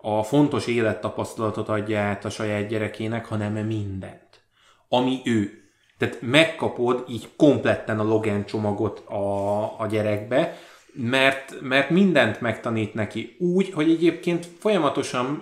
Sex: male